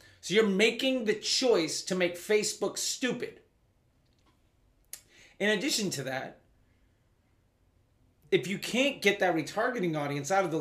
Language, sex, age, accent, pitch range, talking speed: English, male, 30-49, American, 140-200 Hz, 130 wpm